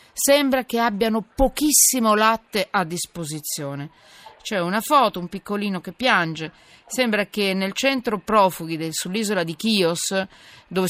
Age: 40-59